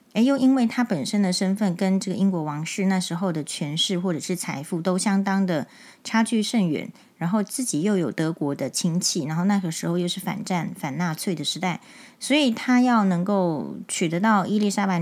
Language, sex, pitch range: Chinese, female, 170-220 Hz